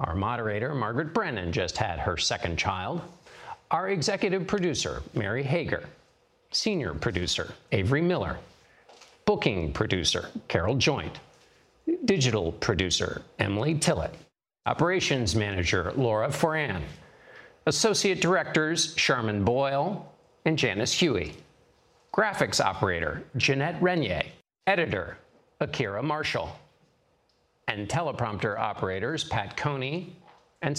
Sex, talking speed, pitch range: male, 95 wpm, 120-175 Hz